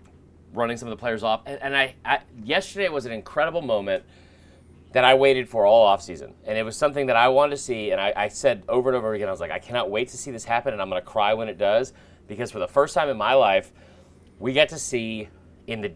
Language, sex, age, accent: English, male, 30-49, American